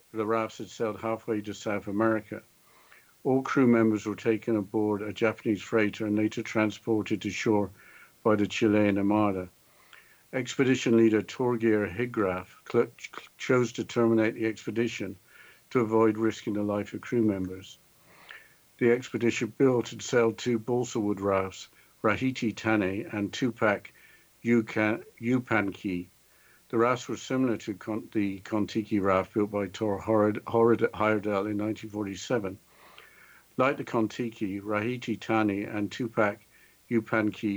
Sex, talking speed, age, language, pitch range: male, 130 wpm, 60-79, English, 105-115 Hz